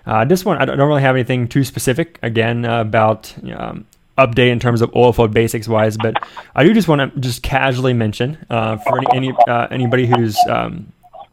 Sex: male